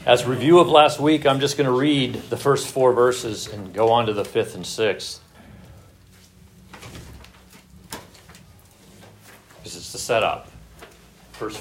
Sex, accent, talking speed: male, American, 140 wpm